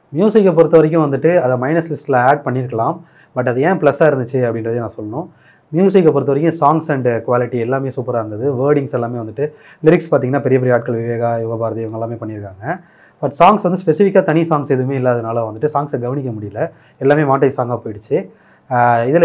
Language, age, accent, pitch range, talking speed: Tamil, 30-49, native, 120-150 Hz, 175 wpm